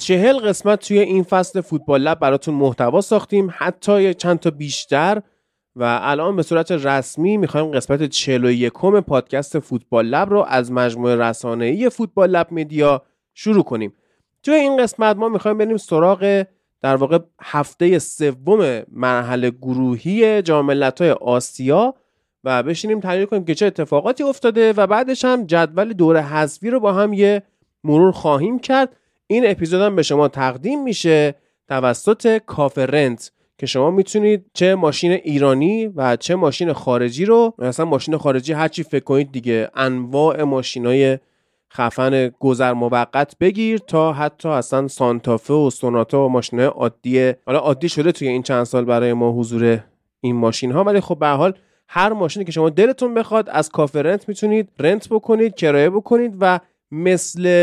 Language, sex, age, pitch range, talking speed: Persian, male, 30-49, 130-200 Hz, 155 wpm